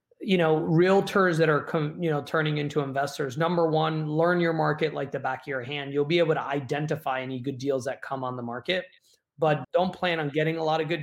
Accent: American